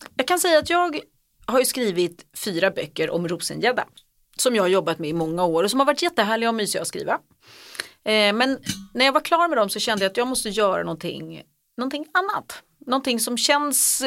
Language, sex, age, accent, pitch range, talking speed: English, female, 30-49, Swedish, 195-255 Hz, 205 wpm